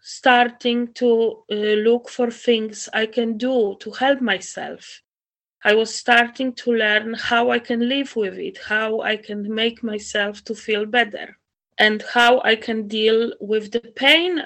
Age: 30-49